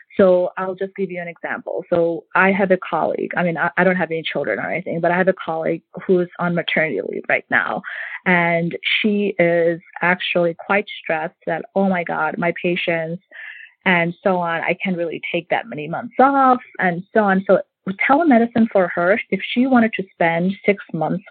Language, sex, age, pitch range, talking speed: English, female, 20-39, 170-195 Hz, 195 wpm